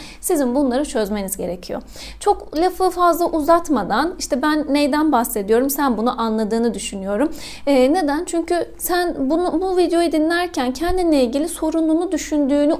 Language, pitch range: Turkish, 270-335 Hz